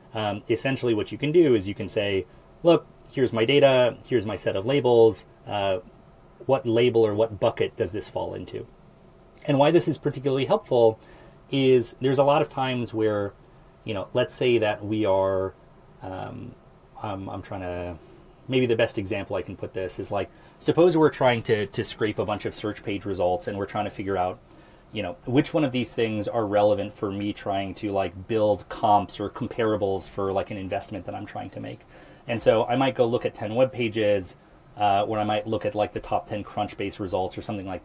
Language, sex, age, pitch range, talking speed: English, male, 30-49, 100-130 Hz, 215 wpm